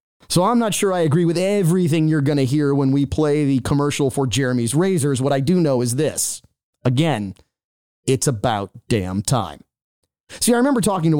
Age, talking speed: 30-49, 195 wpm